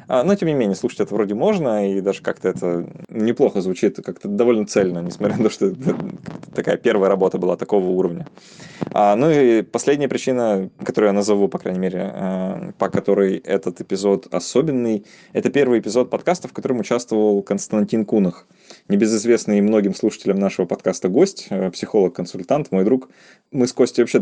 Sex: male